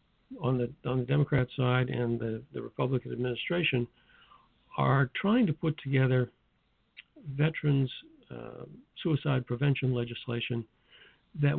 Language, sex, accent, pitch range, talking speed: English, male, American, 120-145 Hz, 115 wpm